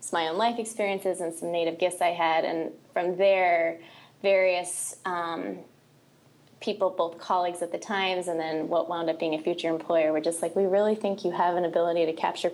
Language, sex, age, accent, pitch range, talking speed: English, female, 10-29, American, 165-185 Hz, 200 wpm